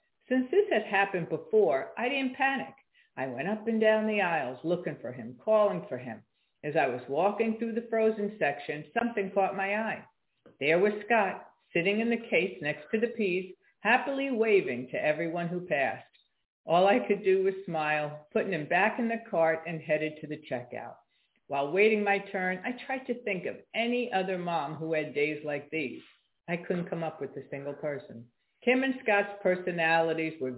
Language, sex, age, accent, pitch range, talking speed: English, female, 50-69, American, 155-220 Hz, 190 wpm